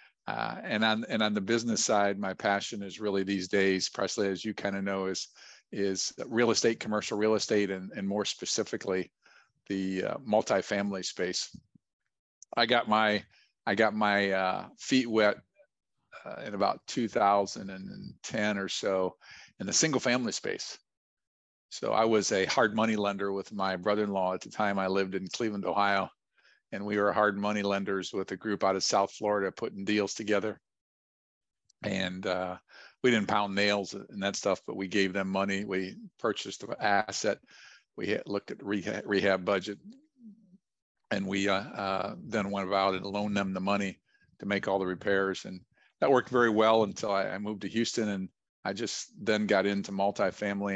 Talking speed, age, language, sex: 175 wpm, 50-69, English, male